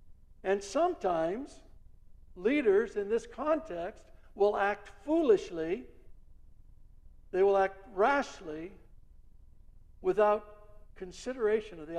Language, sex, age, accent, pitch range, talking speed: English, male, 60-79, American, 180-275 Hz, 85 wpm